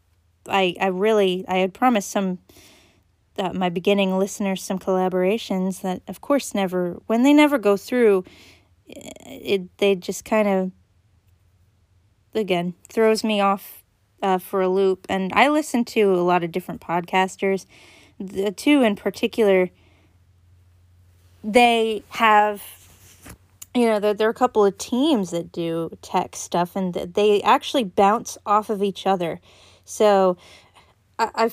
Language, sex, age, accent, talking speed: English, female, 20-39, American, 135 wpm